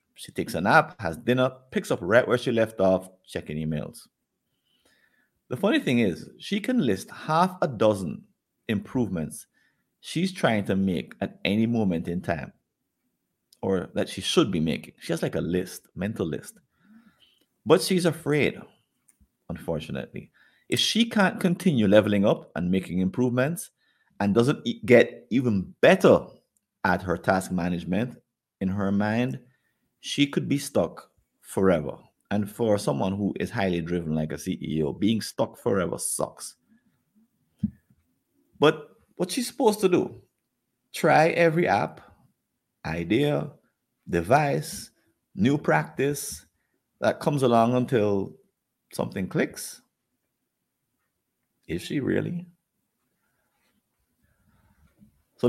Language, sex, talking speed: English, male, 125 wpm